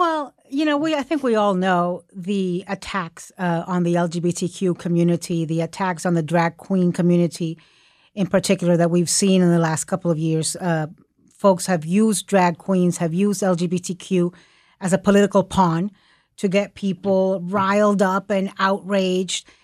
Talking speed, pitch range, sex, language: 165 wpm, 180-205 Hz, female, English